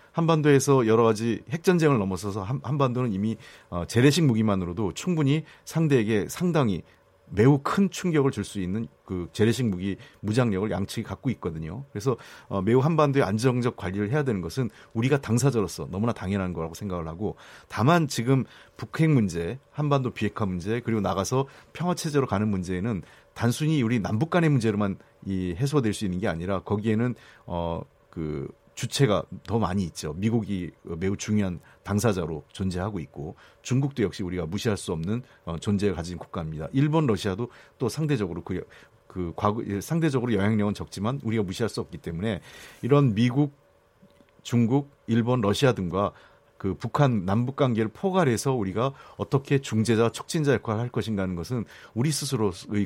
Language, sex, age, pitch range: Korean, male, 30-49, 100-135 Hz